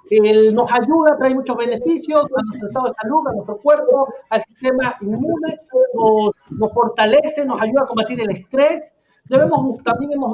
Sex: male